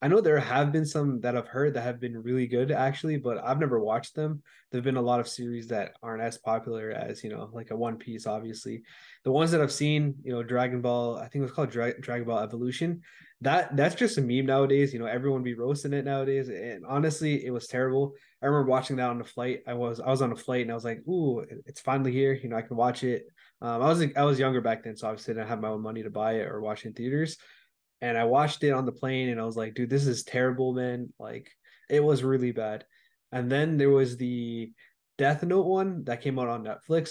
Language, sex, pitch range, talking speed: English, male, 120-140 Hz, 260 wpm